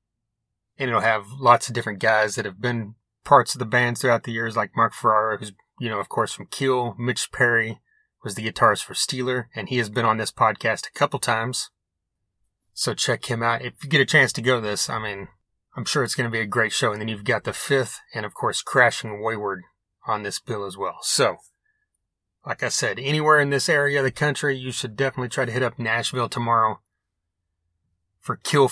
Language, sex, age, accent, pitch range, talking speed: English, male, 30-49, American, 110-135 Hz, 220 wpm